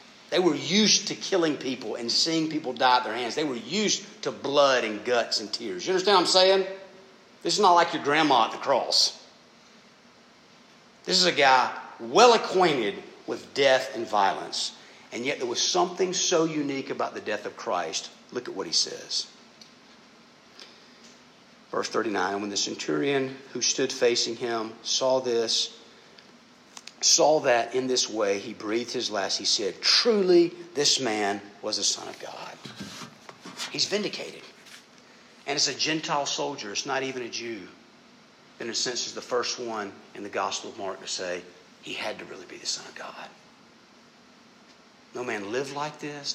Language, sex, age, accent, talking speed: English, male, 50-69, American, 170 wpm